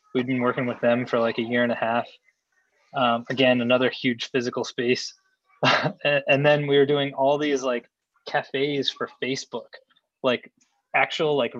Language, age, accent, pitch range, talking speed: English, 20-39, American, 120-140 Hz, 165 wpm